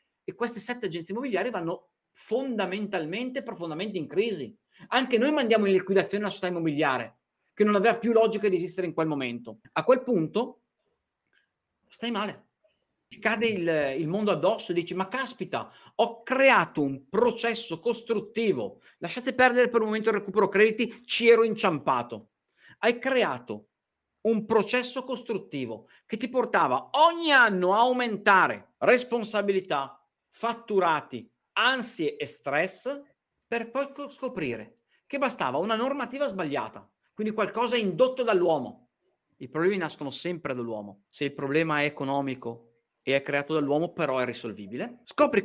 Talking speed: 140 wpm